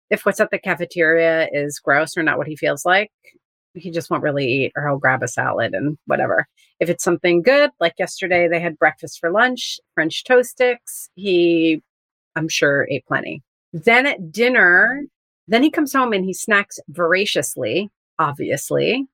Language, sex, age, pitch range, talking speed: English, female, 30-49, 160-230 Hz, 175 wpm